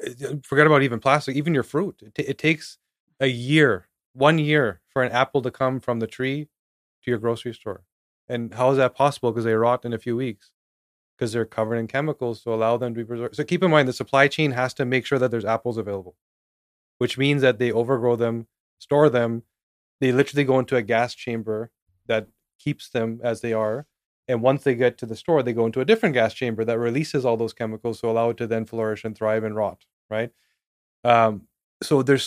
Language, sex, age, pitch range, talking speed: English, male, 30-49, 115-135 Hz, 225 wpm